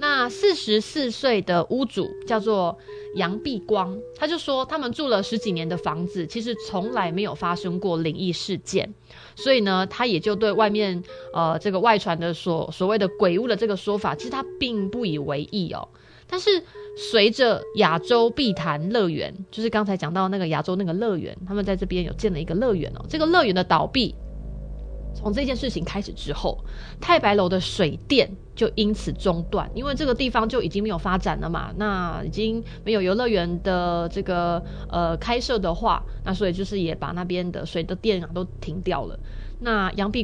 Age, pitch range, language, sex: 20-39, 175-230 Hz, Chinese, female